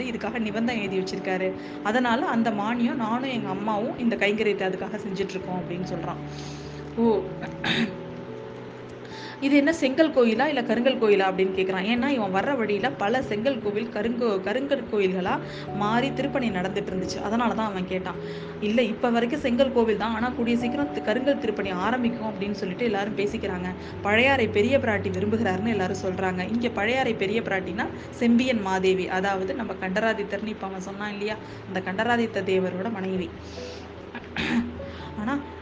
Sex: female